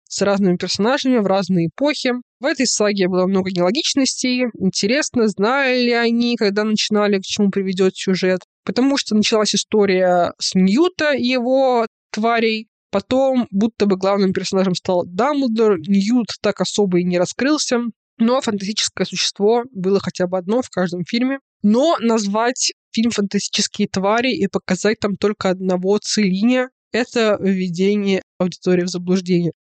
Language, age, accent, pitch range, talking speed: Russian, 20-39, native, 185-245 Hz, 145 wpm